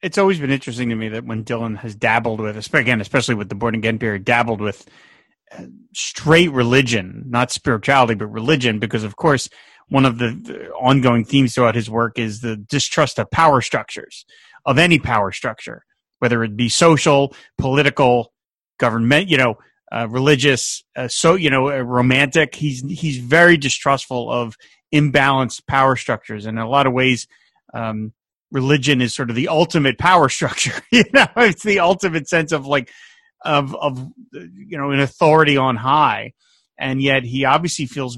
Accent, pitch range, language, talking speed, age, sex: American, 120-145 Hz, English, 170 wpm, 30-49, male